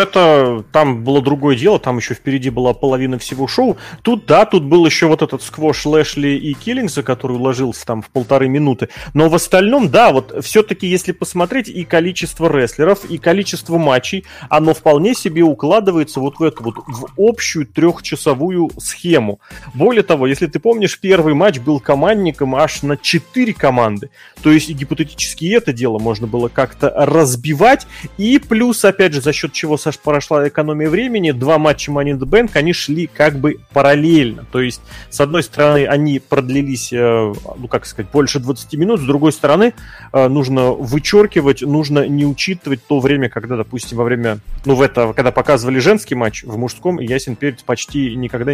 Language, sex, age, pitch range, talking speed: Russian, male, 30-49, 130-170 Hz, 170 wpm